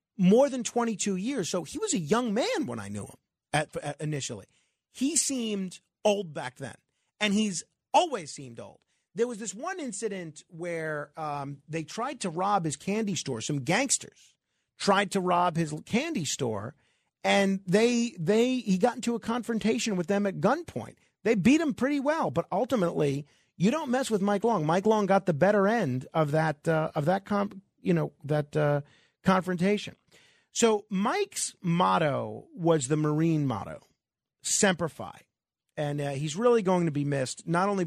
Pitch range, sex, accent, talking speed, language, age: 145-210 Hz, male, American, 175 wpm, English, 40-59